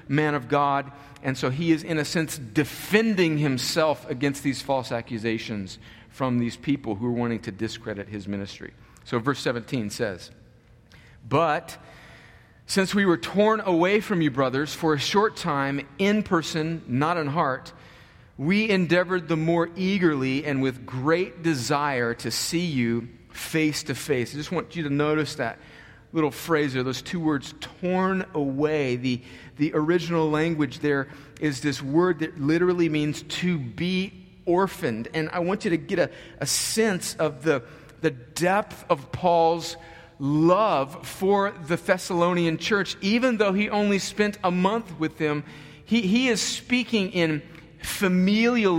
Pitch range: 135-185 Hz